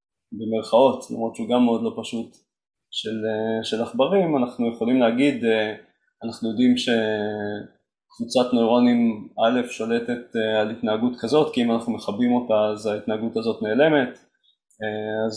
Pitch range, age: 110-125 Hz, 20-39